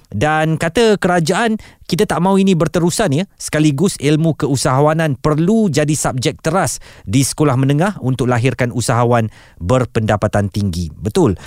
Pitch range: 120-160 Hz